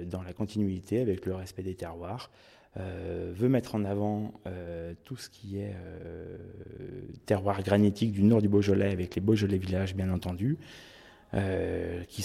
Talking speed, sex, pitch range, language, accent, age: 160 wpm, male, 95-110 Hz, French, French, 30-49